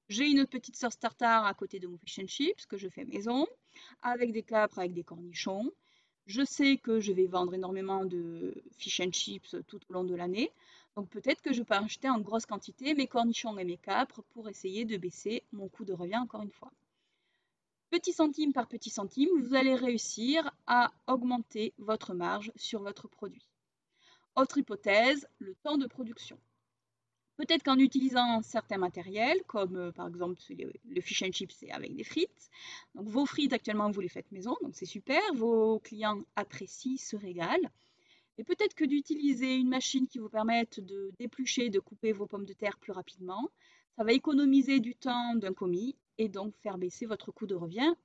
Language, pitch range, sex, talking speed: French, 200-270 Hz, female, 185 wpm